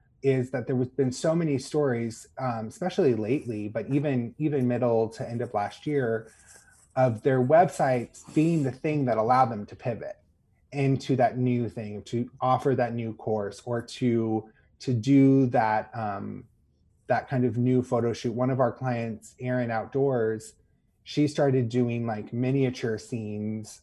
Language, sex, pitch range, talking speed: English, male, 110-130 Hz, 160 wpm